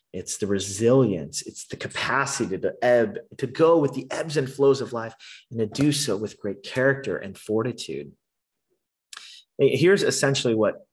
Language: English